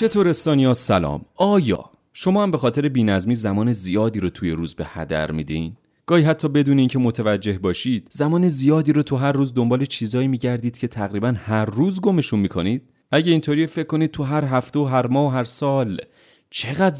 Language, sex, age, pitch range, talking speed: Persian, male, 30-49, 100-145 Hz, 185 wpm